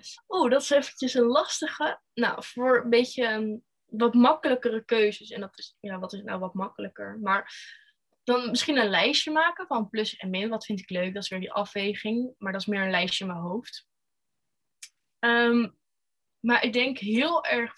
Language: Dutch